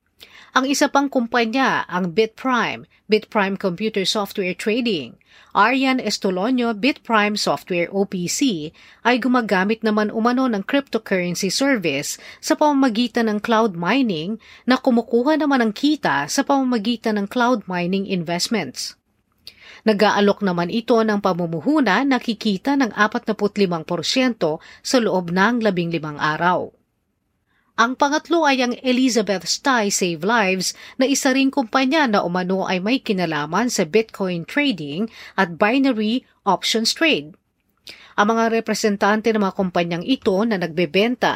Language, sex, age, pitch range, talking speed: Filipino, female, 40-59, 190-255 Hz, 125 wpm